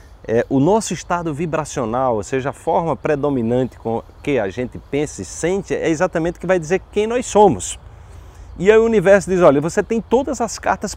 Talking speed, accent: 195 wpm, Brazilian